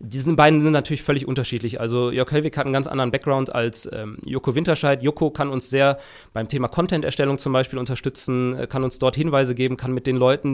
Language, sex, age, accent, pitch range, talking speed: German, male, 20-39, German, 125-145 Hz, 220 wpm